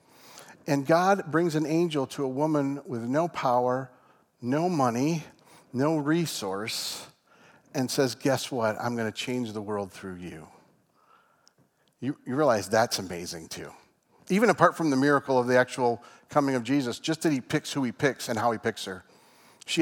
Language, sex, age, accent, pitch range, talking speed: English, male, 40-59, American, 120-155 Hz, 175 wpm